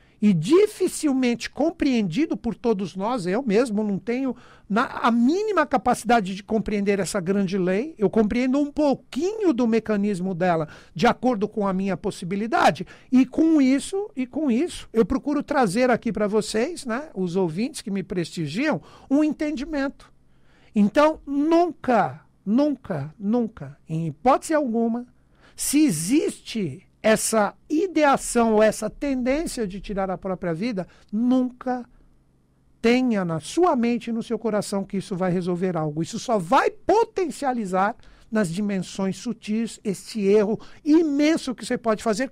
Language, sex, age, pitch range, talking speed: Portuguese, male, 60-79, 200-270 Hz, 140 wpm